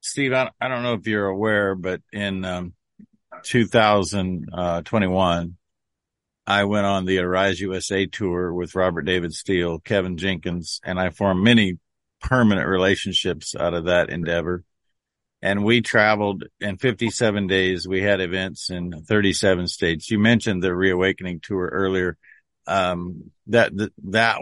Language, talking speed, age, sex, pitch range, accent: English, 135 wpm, 50-69, male, 90-110 Hz, American